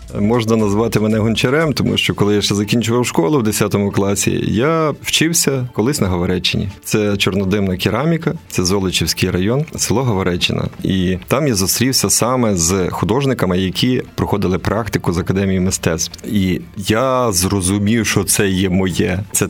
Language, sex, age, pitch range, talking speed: Ukrainian, male, 30-49, 95-120 Hz, 150 wpm